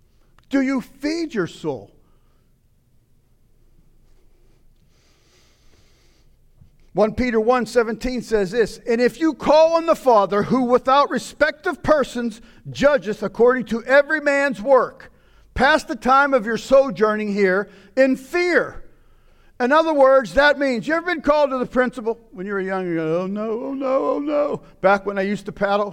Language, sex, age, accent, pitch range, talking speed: English, male, 50-69, American, 200-265 Hz, 155 wpm